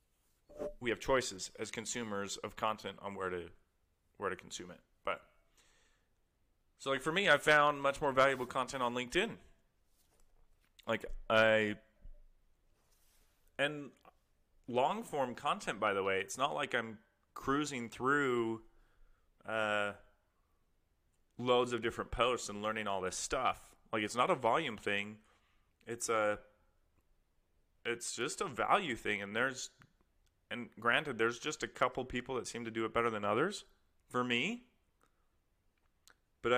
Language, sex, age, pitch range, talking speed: English, male, 30-49, 90-125 Hz, 140 wpm